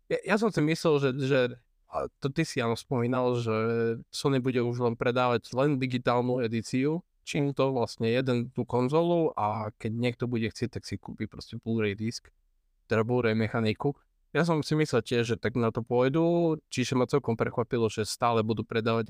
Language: Slovak